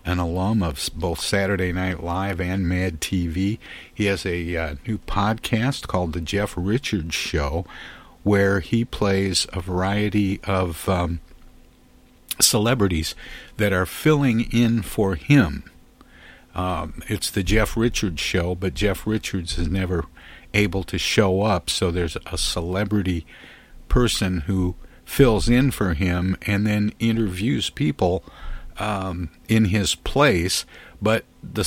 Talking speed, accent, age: 135 wpm, American, 50-69